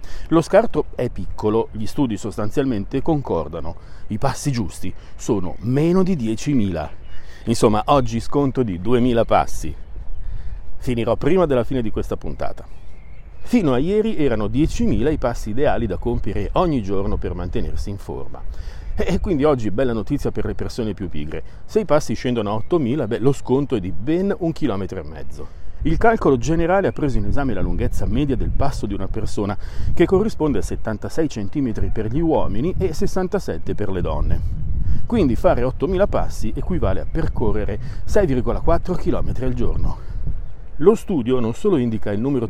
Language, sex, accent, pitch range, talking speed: Italian, male, native, 95-140 Hz, 160 wpm